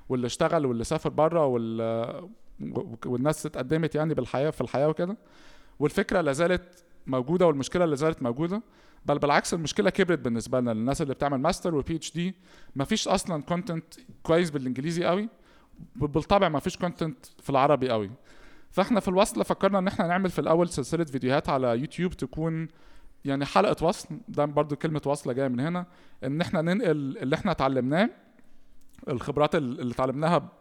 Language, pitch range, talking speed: Arabic, 140-175 Hz, 155 wpm